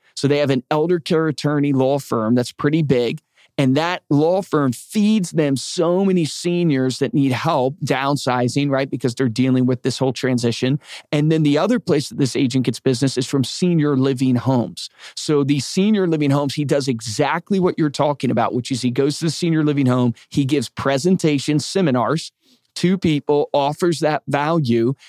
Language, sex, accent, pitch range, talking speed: English, male, American, 130-155 Hz, 185 wpm